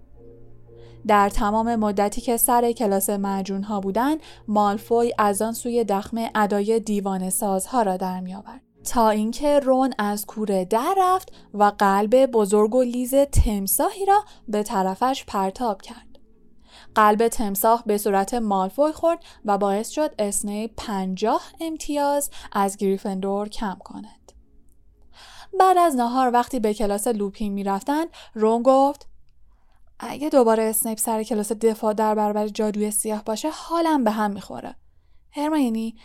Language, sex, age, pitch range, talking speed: Persian, female, 10-29, 200-255 Hz, 140 wpm